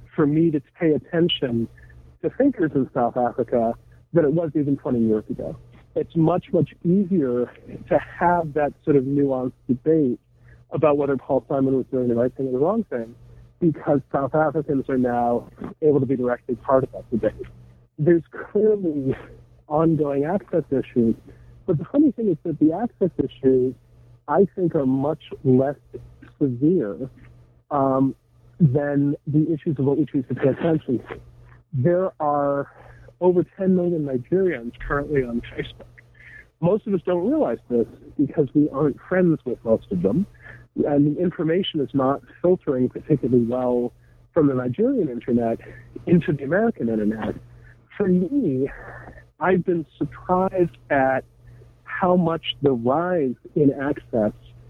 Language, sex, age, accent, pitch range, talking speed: English, male, 40-59, American, 120-160 Hz, 150 wpm